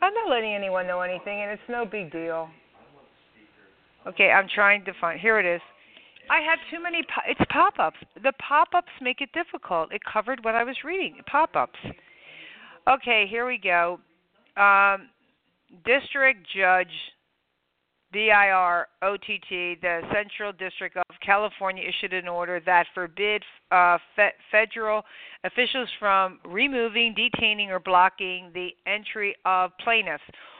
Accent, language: American, English